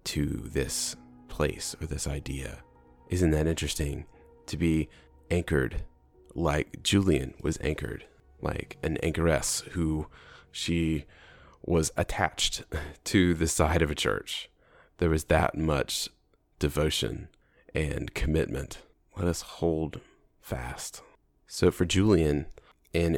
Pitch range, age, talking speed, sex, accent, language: 75-85 Hz, 30-49, 115 wpm, male, American, English